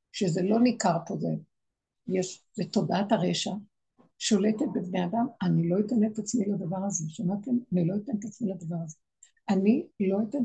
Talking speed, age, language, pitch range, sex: 165 wpm, 60-79, Hebrew, 195-255 Hz, female